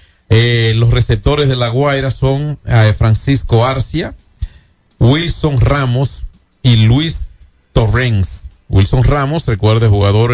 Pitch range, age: 105-130 Hz, 40-59